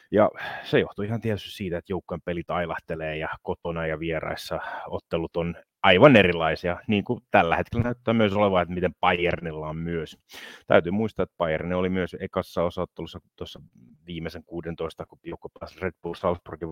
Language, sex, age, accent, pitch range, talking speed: Finnish, male, 30-49, native, 85-105 Hz, 170 wpm